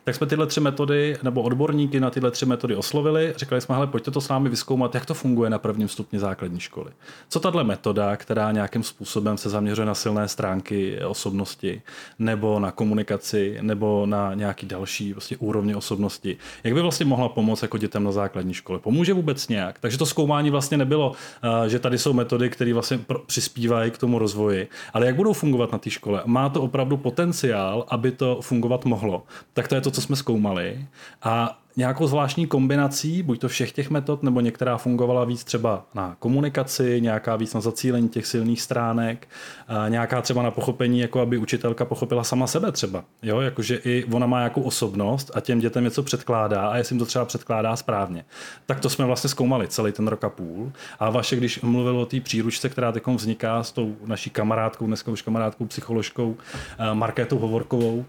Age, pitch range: 30-49, 110-130 Hz